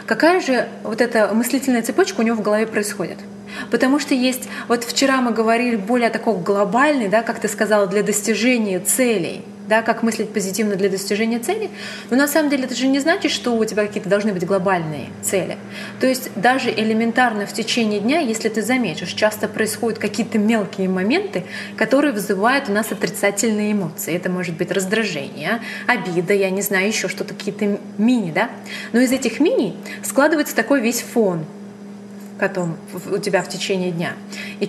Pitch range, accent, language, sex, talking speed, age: 200-235 Hz, native, Russian, female, 175 wpm, 20-39